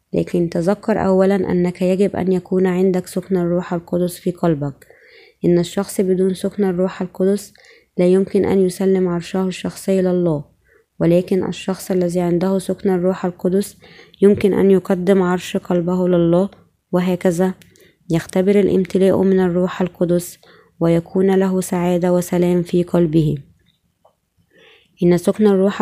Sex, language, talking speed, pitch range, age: female, Arabic, 125 wpm, 175-190 Hz, 20-39